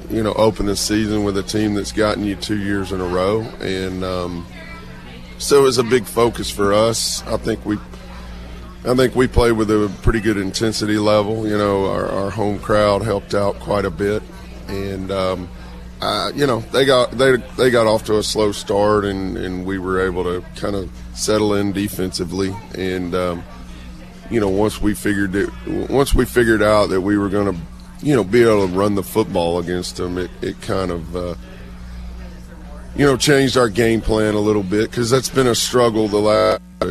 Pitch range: 90-110 Hz